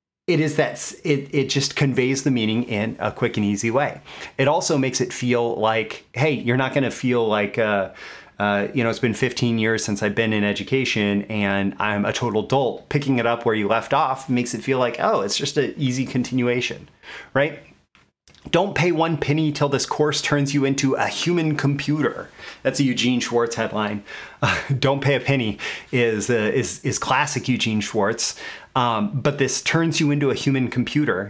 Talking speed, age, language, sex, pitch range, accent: 195 wpm, 30-49, English, male, 120-145 Hz, American